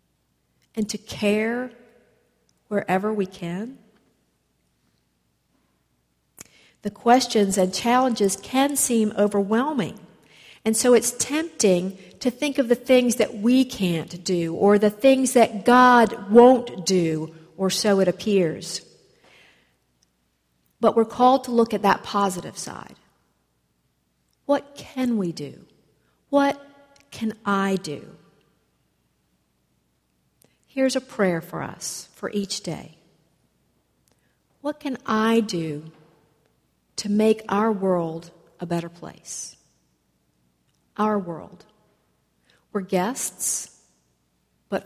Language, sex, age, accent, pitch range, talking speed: English, female, 50-69, American, 140-220 Hz, 105 wpm